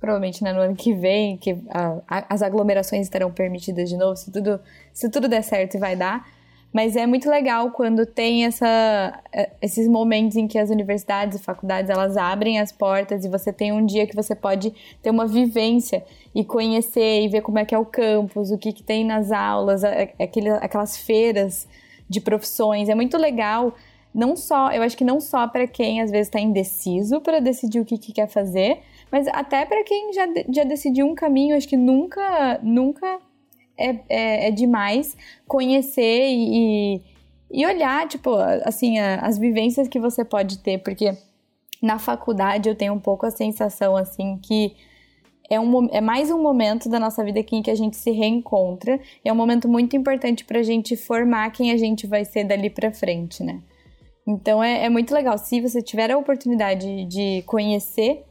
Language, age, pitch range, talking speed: Portuguese, 20-39, 200-240 Hz, 190 wpm